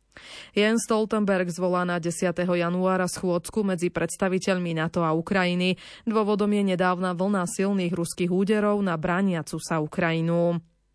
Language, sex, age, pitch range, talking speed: Slovak, female, 20-39, 175-210 Hz, 125 wpm